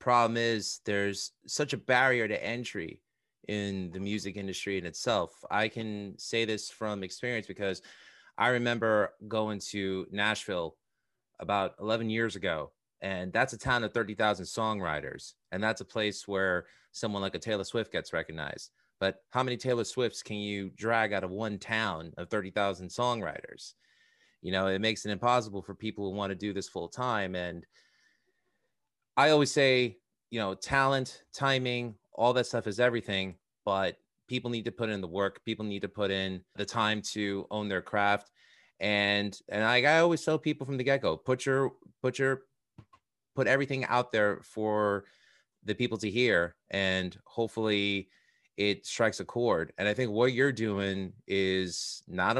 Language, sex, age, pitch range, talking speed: English, male, 30-49, 100-120 Hz, 170 wpm